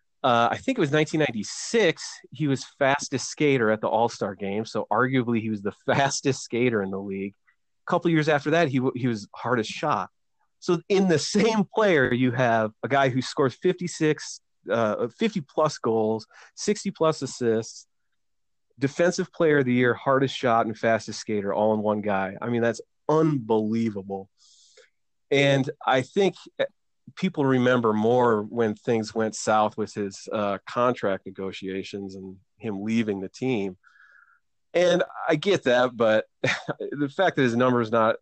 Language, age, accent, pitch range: English, 30-49, American, 105-150 Hz